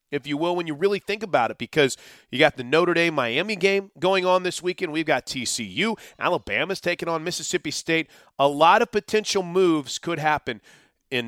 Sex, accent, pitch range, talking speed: male, American, 145-200 Hz, 195 wpm